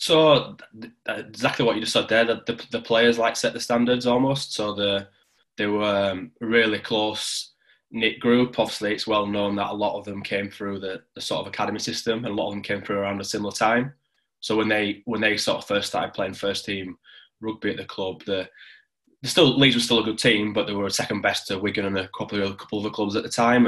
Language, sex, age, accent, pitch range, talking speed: English, male, 20-39, British, 100-110 Hz, 245 wpm